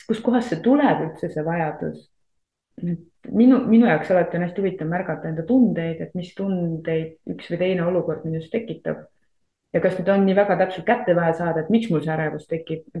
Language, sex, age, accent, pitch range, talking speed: English, female, 20-39, Finnish, 165-200 Hz, 190 wpm